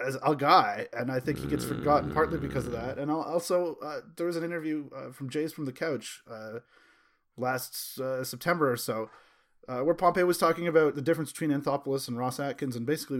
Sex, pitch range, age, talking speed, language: male, 120-145 Hz, 30-49, 215 wpm, English